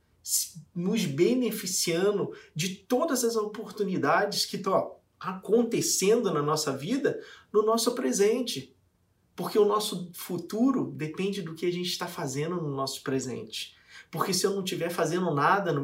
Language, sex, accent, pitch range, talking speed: Portuguese, male, Brazilian, 140-210 Hz, 140 wpm